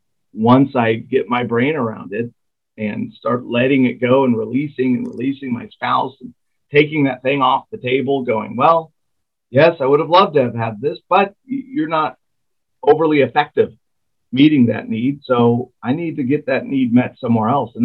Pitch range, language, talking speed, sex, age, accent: 110-140 Hz, English, 185 wpm, male, 40-59, American